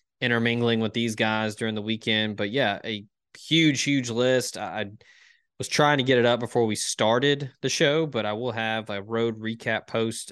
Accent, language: American, English